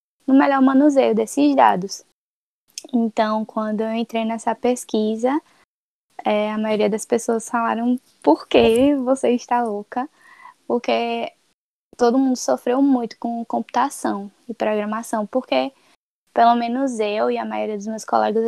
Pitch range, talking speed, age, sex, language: 220-265 Hz, 135 wpm, 10-29, female, Portuguese